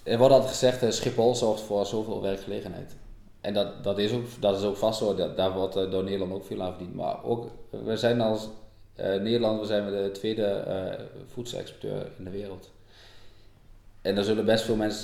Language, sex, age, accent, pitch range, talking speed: Dutch, male, 20-39, Dutch, 100-120 Hz, 190 wpm